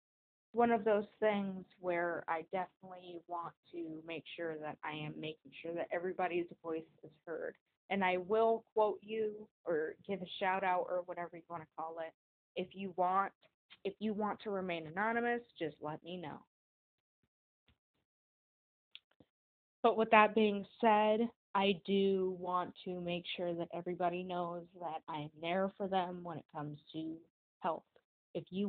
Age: 20-39